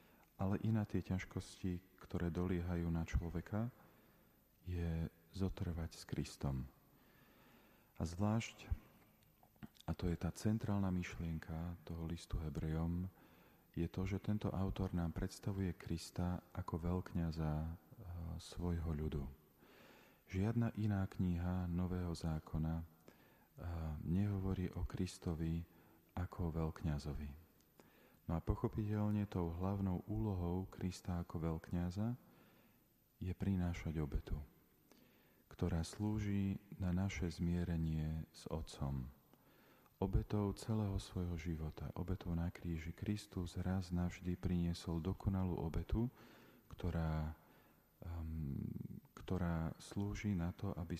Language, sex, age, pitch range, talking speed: Slovak, male, 40-59, 80-95 Hz, 100 wpm